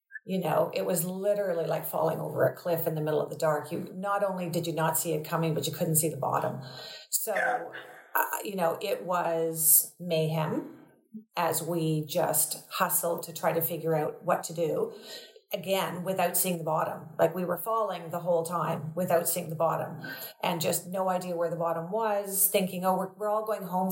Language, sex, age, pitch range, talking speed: English, female, 40-59, 160-200 Hz, 205 wpm